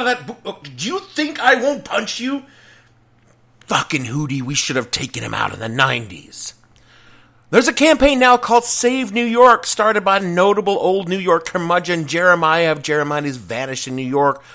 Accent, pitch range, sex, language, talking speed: American, 130-180 Hz, male, English, 175 wpm